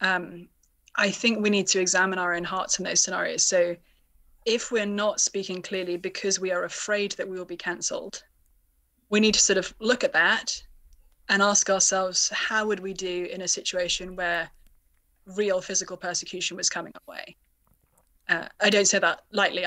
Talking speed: 180 wpm